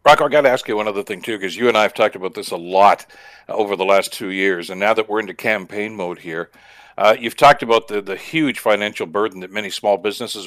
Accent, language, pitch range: American, English, 105-130 Hz